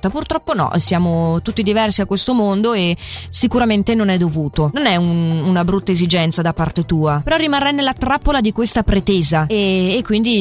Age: 30-49